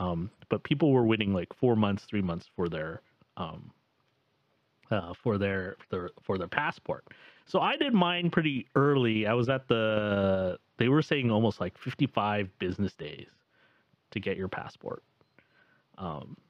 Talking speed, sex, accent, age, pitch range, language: 155 wpm, male, American, 30-49, 105-145 Hz, English